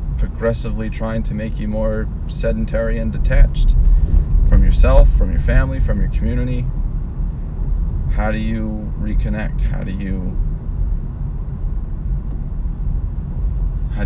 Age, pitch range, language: 30-49, 75-110 Hz, English